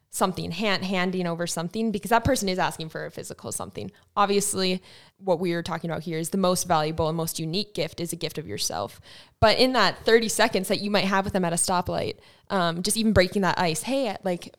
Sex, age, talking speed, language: female, 20-39, 230 wpm, English